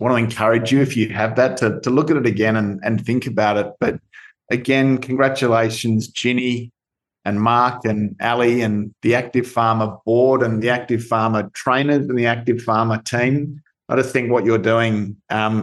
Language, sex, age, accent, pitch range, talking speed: English, male, 50-69, Australian, 110-120 Hz, 190 wpm